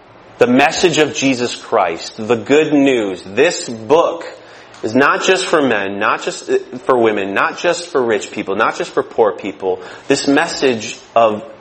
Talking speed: 165 wpm